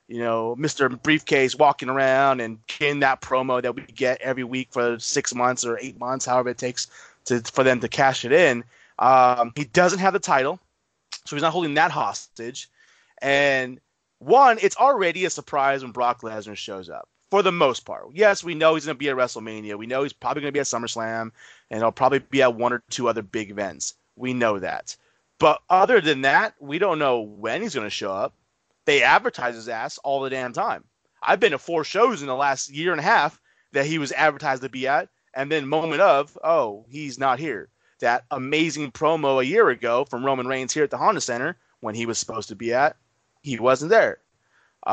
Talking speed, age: 215 wpm, 30-49